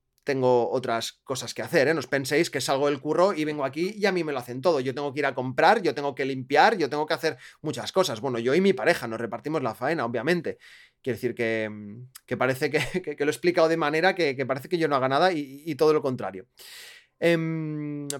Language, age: Spanish, 30-49